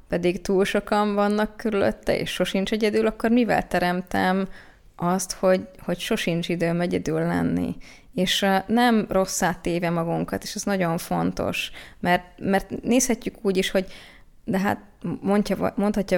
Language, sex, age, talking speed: Hungarian, female, 20-39, 140 wpm